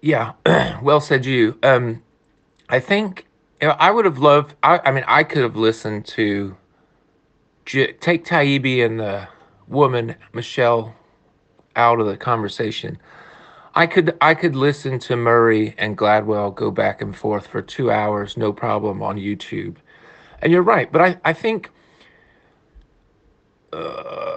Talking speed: 145 wpm